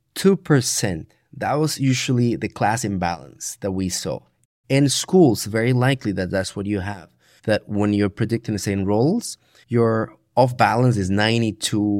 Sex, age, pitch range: male, 30-49, 105-140 Hz